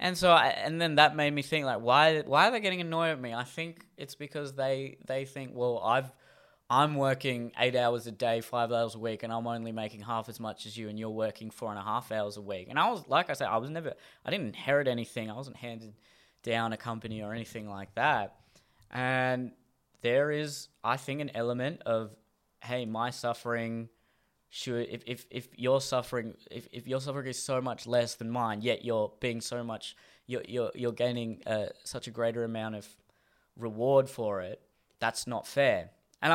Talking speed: 210 wpm